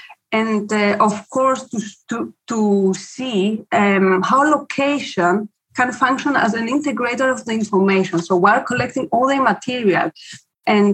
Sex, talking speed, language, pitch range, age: female, 135 wpm, English, 190-245 Hz, 30-49